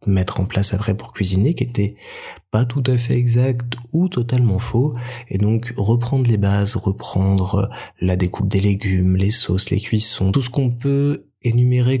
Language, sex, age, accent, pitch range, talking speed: French, male, 20-39, French, 100-120 Hz, 175 wpm